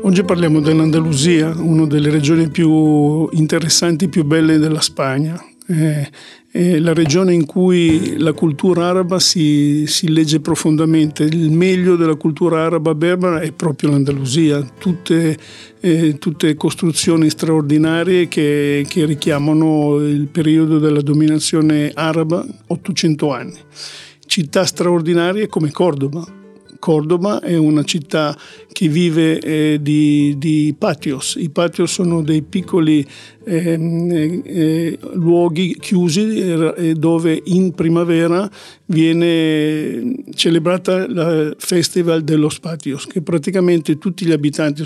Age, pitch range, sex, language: 50-69, 155-175 Hz, male, Italian